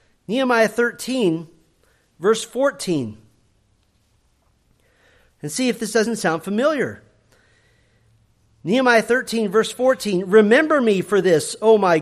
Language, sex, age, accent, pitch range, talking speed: English, male, 40-59, American, 175-235 Hz, 105 wpm